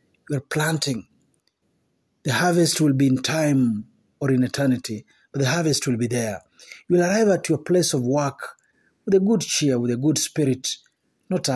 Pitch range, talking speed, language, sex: 125-160 Hz, 175 wpm, Swahili, male